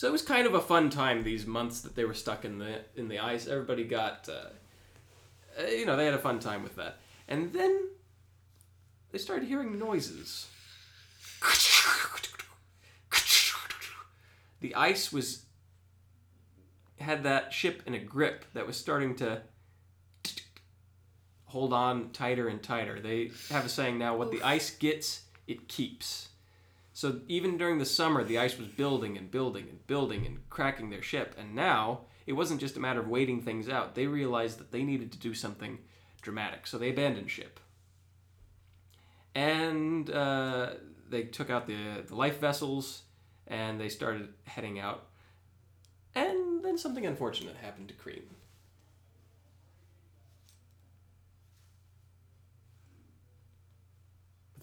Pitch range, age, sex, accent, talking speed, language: 95-130 Hz, 20-39, male, American, 145 wpm, English